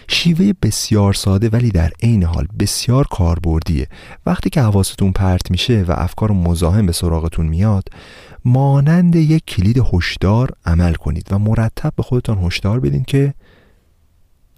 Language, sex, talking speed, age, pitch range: Persian, male, 135 wpm, 40-59, 85-115 Hz